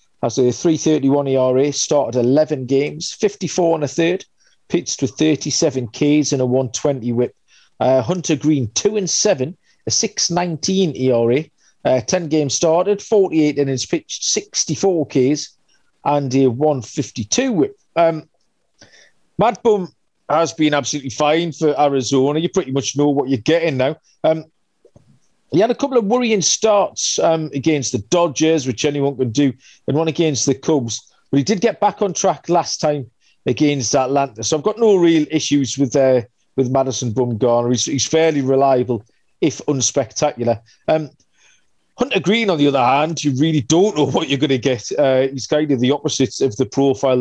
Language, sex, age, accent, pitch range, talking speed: English, male, 40-59, British, 130-165 Hz, 170 wpm